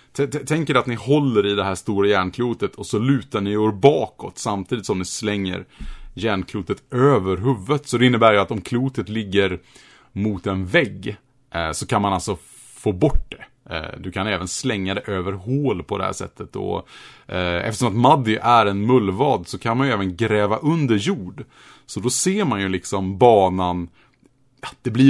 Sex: male